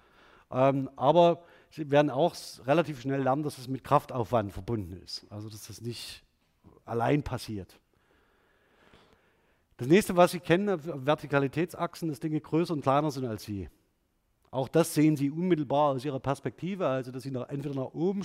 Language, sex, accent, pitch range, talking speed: German, male, German, 130-170 Hz, 155 wpm